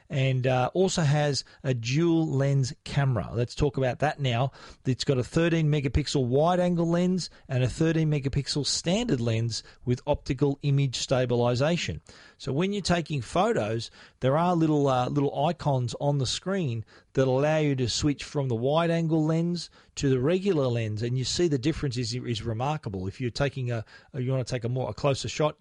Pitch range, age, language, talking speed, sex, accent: 125-150 Hz, 40-59, English, 185 wpm, male, Australian